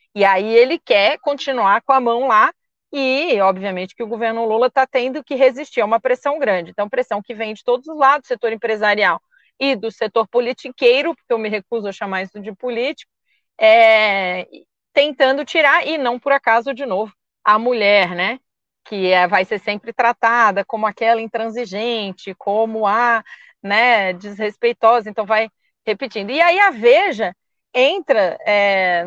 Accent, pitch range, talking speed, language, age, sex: Brazilian, 215-280 Hz, 165 wpm, Portuguese, 40-59, female